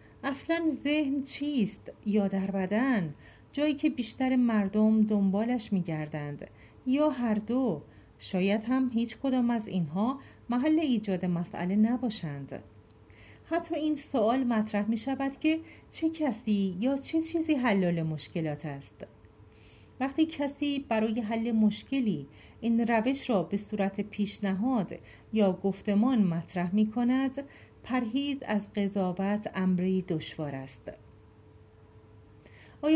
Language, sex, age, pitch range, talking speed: Persian, female, 40-59, 185-255 Hz, 105 wpm